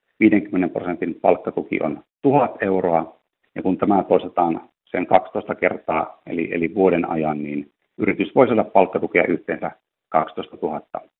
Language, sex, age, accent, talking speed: Finnish, male, 50-69, native, 135 wpm